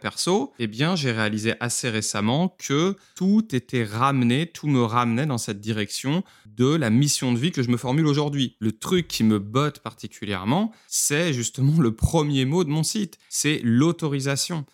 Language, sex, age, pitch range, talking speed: French, male, 30-49, 110-145 Hz, 175 wpm